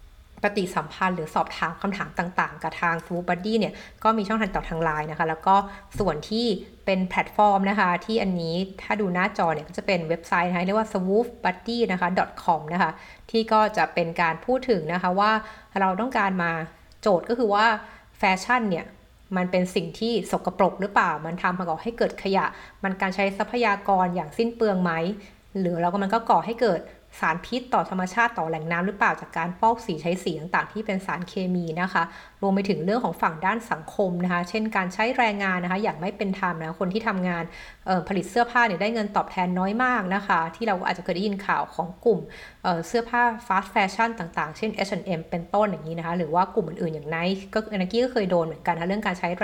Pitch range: 175-215 Hz